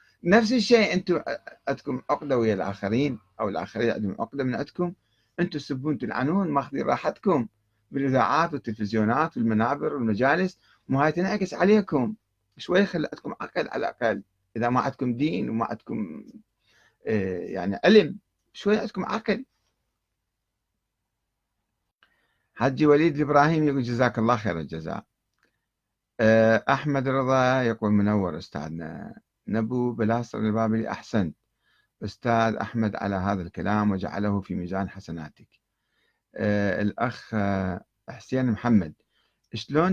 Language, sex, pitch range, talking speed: Arabic, male, 105-145 Hz, 110 wpm